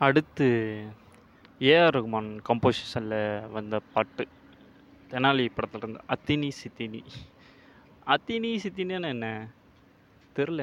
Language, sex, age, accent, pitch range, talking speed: Tamil, male, 20-39, native, 115-150 Hz, 85 wpm